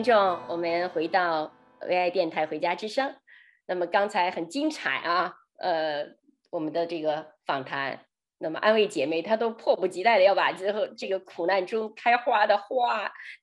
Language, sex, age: Chinese, female, 30-49